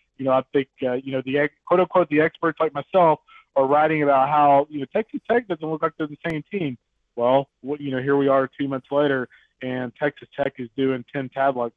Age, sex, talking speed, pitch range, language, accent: 20-39, male, 240 wpm, 130-155 Hz, English, American